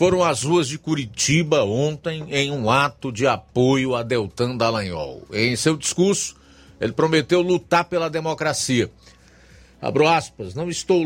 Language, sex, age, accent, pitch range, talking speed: Portuguese, male, 50-69, Brazilian, 120-165 Hz, 140 wpm